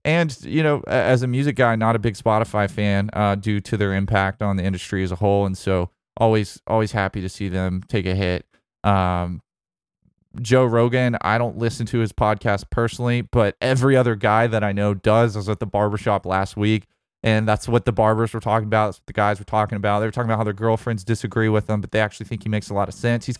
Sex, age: male, 20-39